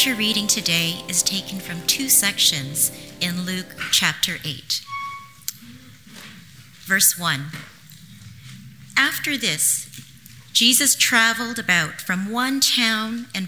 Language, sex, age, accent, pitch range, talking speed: English, female, 40-59, American, 150-210 Hz, 100 wpm